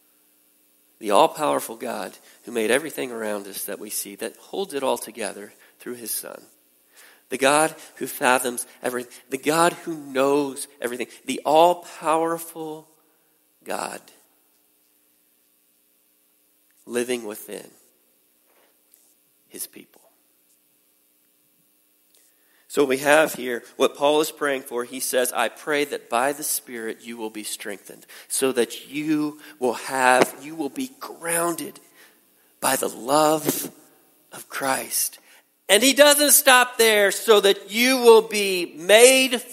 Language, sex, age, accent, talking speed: English, male, 40-59, American, 125 wpm